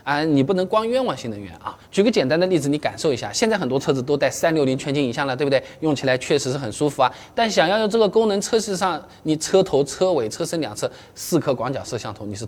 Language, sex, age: Chinese, male, 20-39